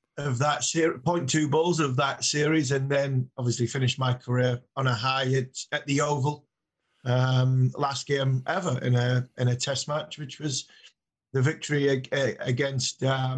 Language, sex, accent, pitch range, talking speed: English, male, British, 125-150 Hz, 175 wpm